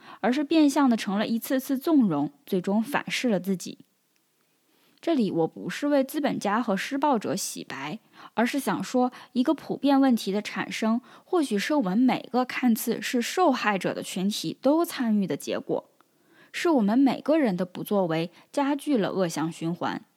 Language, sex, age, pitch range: Chinese, female, 10-29, 195-280 Hz